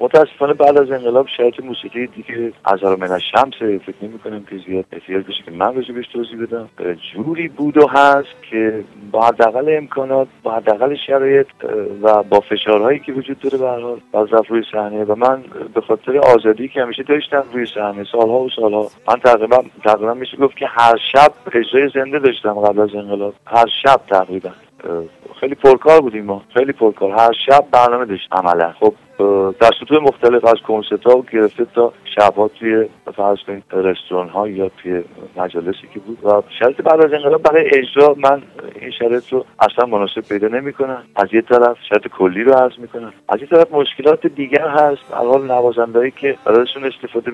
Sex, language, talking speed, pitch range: male, Persian, 170 wpm, 105-135 Hz